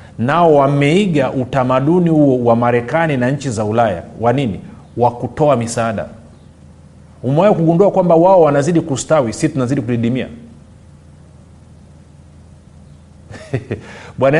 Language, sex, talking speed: Swahili, male, 105 wpm